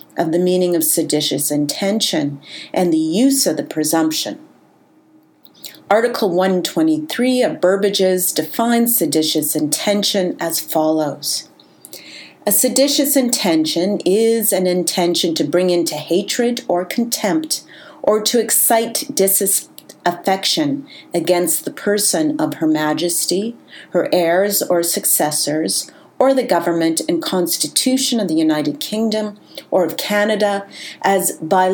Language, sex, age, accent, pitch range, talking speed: English, female, 40-59, American, 165-250 Hz, 115 wpm